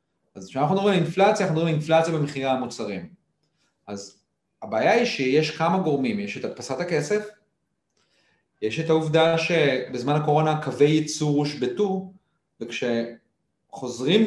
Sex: male